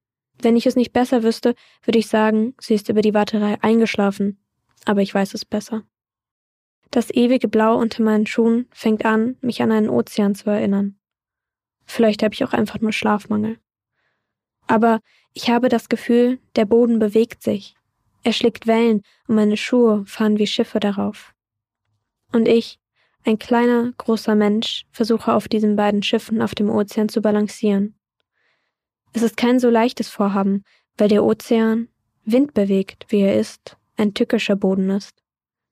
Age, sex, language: 10-29, female, German